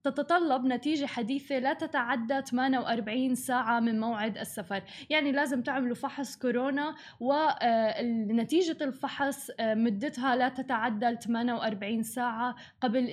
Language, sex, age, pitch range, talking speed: Arabic, female, 10-29, 230-280 Hz, 105 wpm